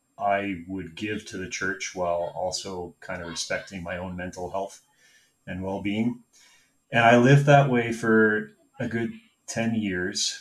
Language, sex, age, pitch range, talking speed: English, male, 30-49, 95-120 Hz, 155 wpm